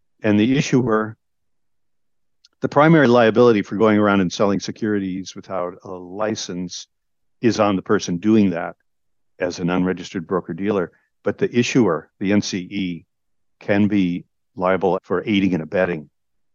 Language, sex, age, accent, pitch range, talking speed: English, male, 50-69, American, 90-110 Hz, 135 wpm